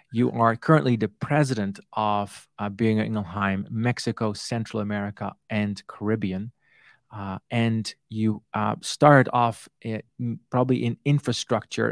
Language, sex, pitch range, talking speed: English, male, 105-120 Hz, 120 wpm